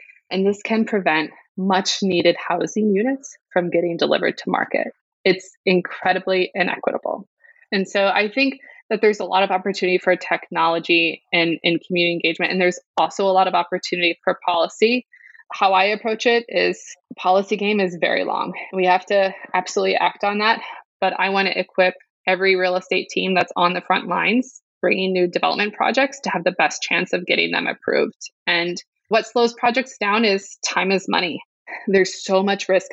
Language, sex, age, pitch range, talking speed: English, female, 20-39, 175-205 Hz, 180 wpm